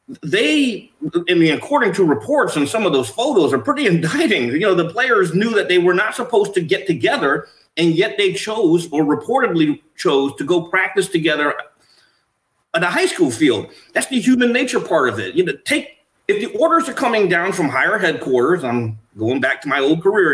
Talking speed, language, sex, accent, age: 205 wpm, English, male, American, 30-49